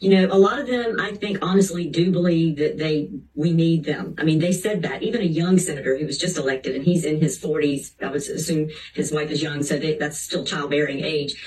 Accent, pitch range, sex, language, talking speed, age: American, 155-190 Hz, female, English, 245 wpm, 50-69